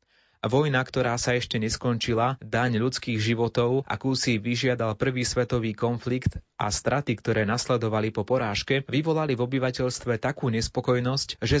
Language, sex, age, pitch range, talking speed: Slovak, male, 30-49, 110-130 Hz, 135 wpm